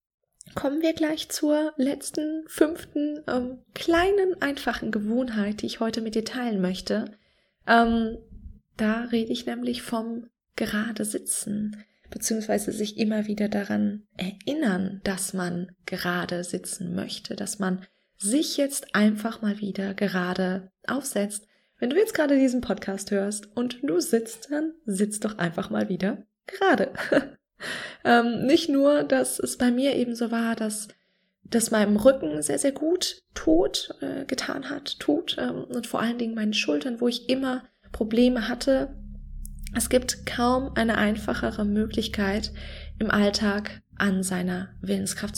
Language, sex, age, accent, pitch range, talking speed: German, female, 20-39, German, 200-255 Hz, 140 wpm